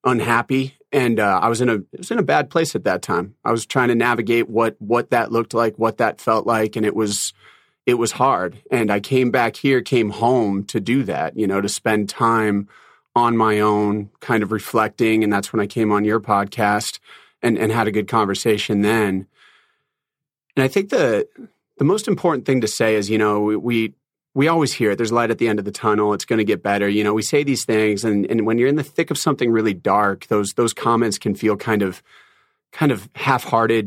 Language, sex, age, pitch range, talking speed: English, male, 30-49, 105-120 Hz, 230 wpm